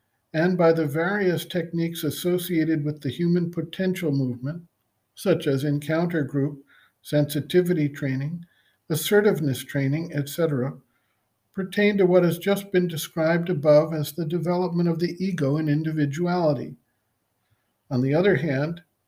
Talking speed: 125 wpm